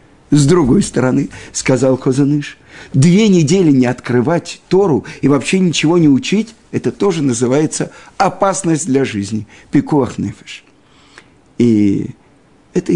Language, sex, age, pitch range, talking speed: Russian, male, 50-69, 125-170 Hz, 105 wpm